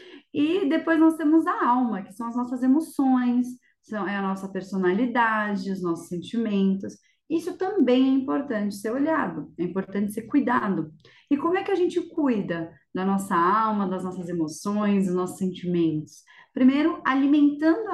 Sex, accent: female, Brazilian